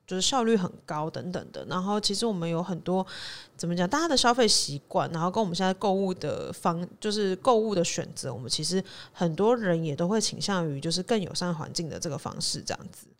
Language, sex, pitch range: Chinese, female, 165-200 Hz